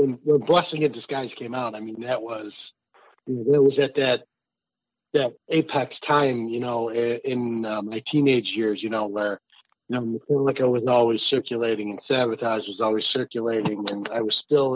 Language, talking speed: English, 185 wpm